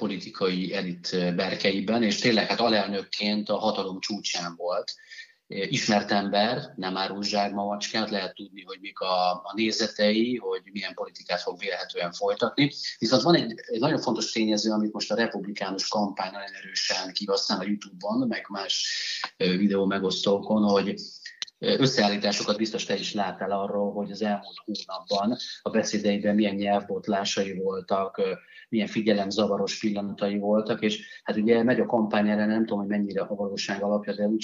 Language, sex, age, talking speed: Hungarian, male, 30-49, 150 wpm